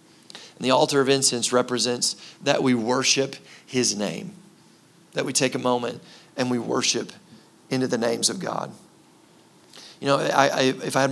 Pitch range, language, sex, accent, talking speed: 120-135 Hz, English, male, American, 155 wpm